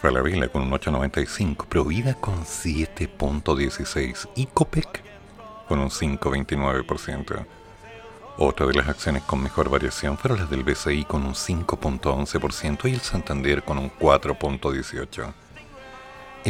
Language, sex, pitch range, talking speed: Spanish, male, 70-90 Hz, 120 wpm